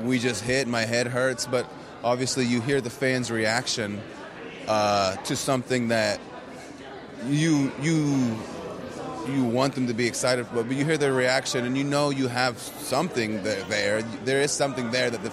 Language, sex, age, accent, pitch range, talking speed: English, male, 30-49, American, 110-130 Hz, 170 wpm